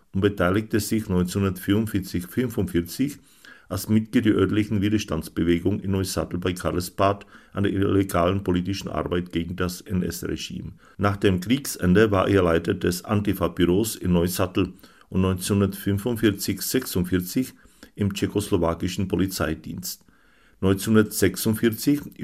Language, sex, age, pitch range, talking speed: Czech, male, 50-69, 90-105 Hz, 105 wpm